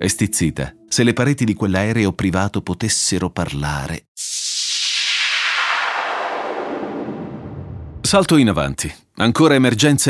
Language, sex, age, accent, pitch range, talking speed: Italian, male, 30-49, native, 100-160 Hz, 90 wpm